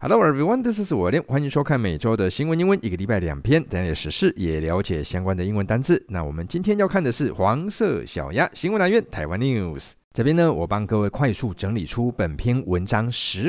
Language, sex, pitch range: Chinese, male, 95-145 Hz